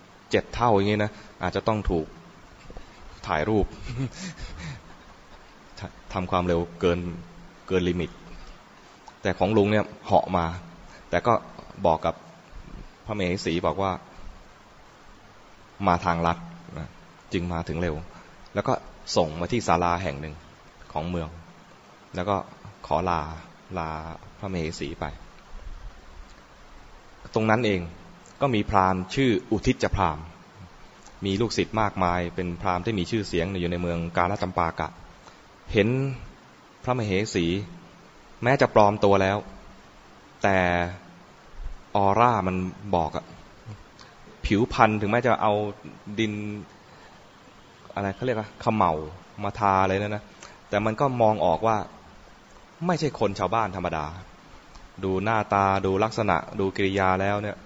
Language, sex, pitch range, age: English, male, 85-105 Hz, 20-39